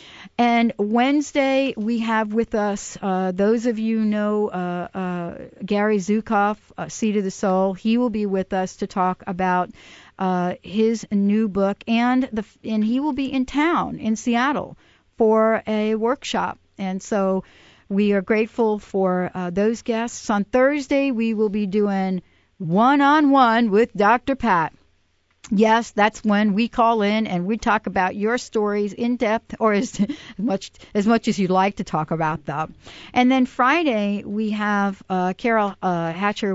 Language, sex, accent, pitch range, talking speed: English, female, American, 185-230 Hz, 165 wpm